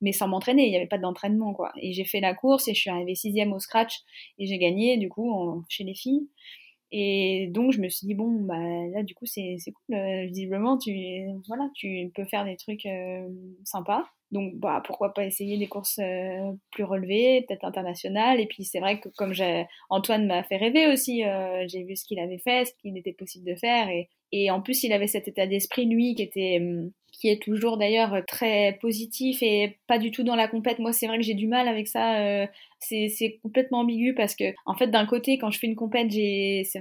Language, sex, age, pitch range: French, female, 20-39, 195-235 Hz